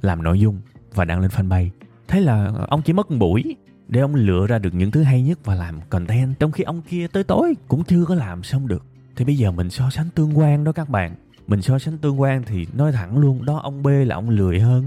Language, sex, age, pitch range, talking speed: Vietnamese, male, 20-39, 110-160 Hz, 260 wpm